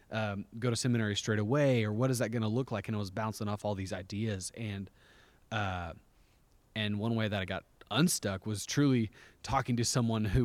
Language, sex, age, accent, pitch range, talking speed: English, male, 30-49, American, 100-120 Hz, 210 wpm